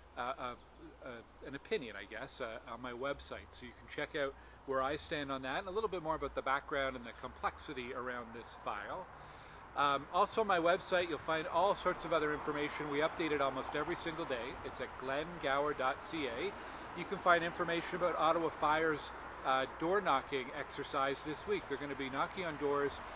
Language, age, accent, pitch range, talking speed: English, 40-59, American, 135-165 Hz, 200 wpm